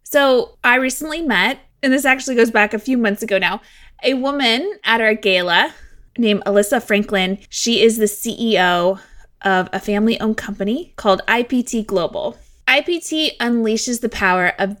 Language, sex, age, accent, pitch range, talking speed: English, female, 20-39, American, 195-255 Hz, 160 wpm